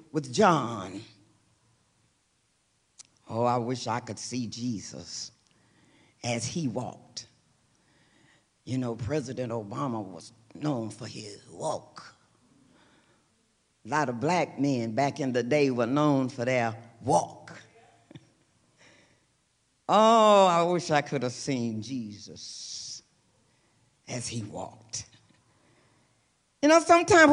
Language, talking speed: English, 110 wpm